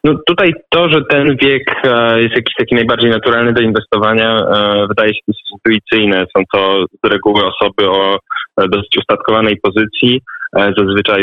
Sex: male